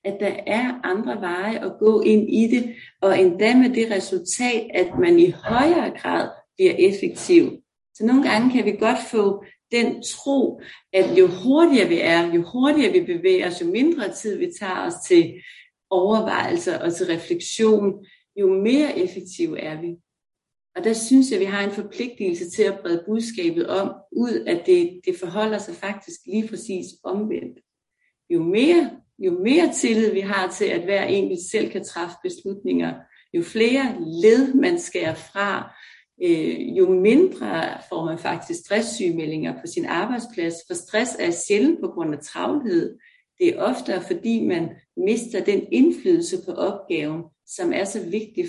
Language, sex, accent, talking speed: Danish, female, native, 165 wpm